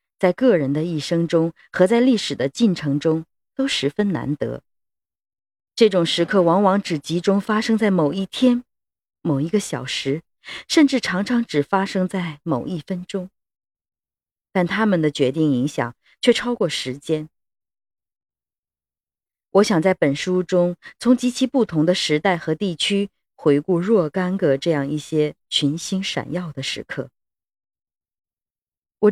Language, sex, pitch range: Chinese, female, 150-200 Hz